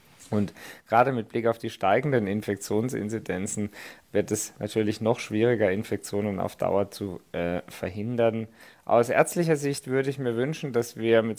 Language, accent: German, German